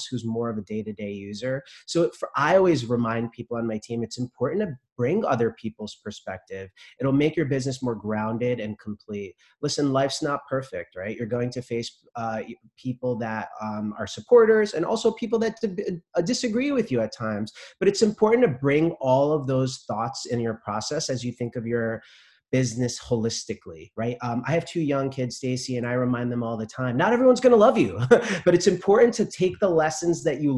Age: 30-49